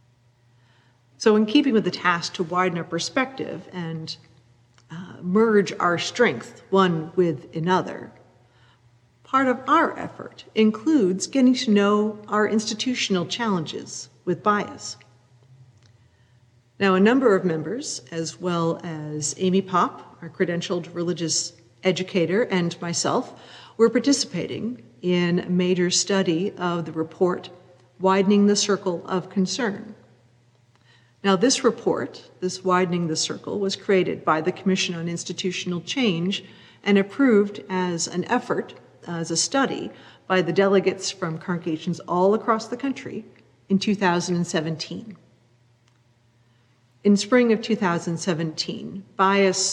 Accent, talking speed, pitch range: American, 120 wpm, 155-195 Hz